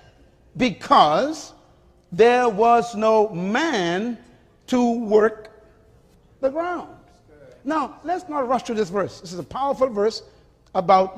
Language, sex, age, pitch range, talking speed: English, male, 50-69, 190-255 Hz, 120 wpm